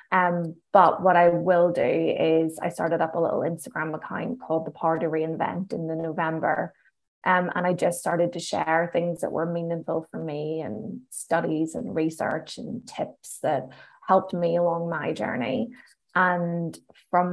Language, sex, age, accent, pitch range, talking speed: English, female, 20-39, Irish, 165-185 Hz, 170 wpm